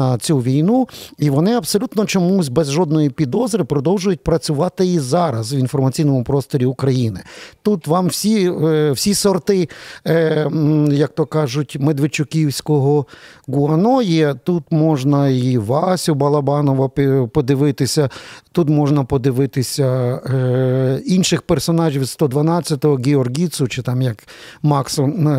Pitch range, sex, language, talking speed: 140-175 Hz, male, Ukrainian, 110 wpm